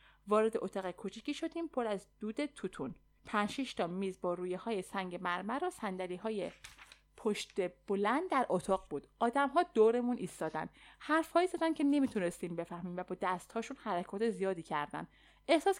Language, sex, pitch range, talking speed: Persian, female, 195-275 Hz, 160 wpm